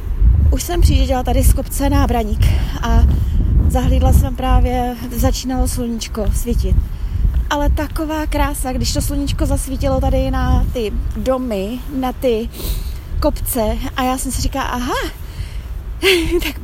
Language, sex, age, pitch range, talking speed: Czech, female, 20-39, 225-275 Hz, 125 wpm